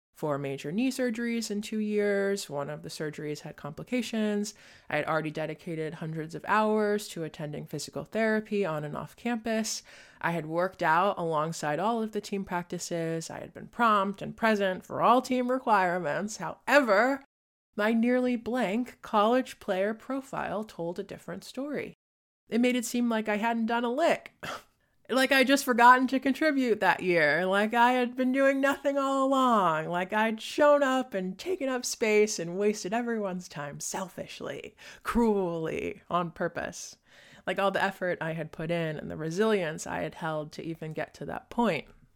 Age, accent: 20-39, American